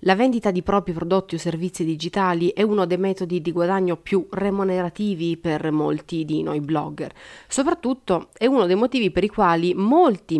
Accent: native